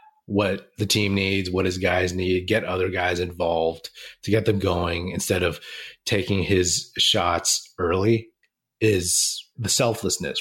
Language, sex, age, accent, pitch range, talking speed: English, male, 30-49, American, 90-110 Hz, 145 wpm